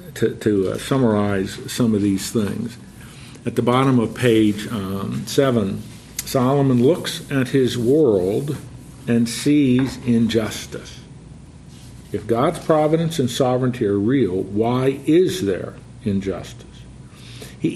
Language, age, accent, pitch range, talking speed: English, 50-69, American, 110-135 Hz, 120 wpm